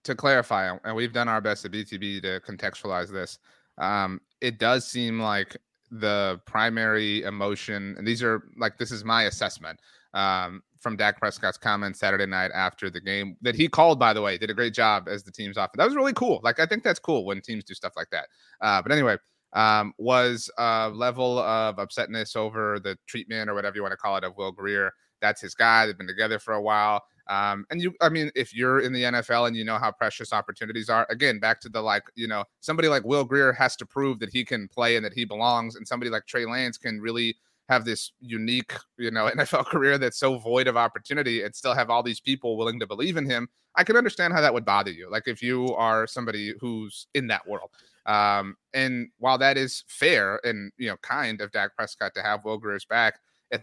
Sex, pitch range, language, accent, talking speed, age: male, 105-125 Hz, English, American, 225 wpm, 30-49